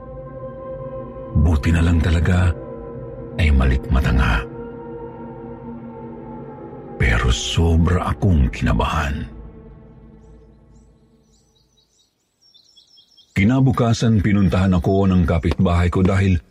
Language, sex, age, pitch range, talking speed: Filipino, male, 50-69, 80-110 Hz, 65 wpm